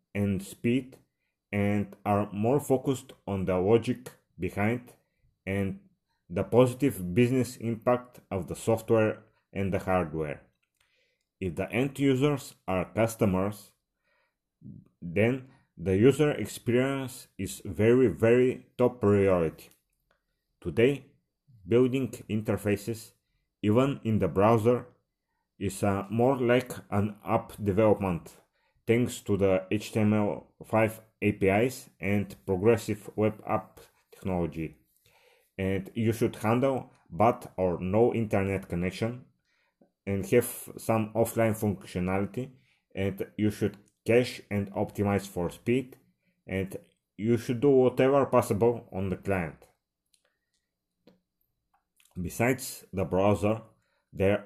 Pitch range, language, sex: 95-120 Hz, English, male